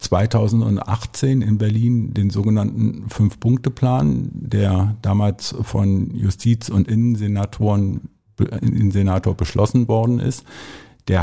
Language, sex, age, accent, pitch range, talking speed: German, male, 50-69, German, 95-115 Hz, 90 wpm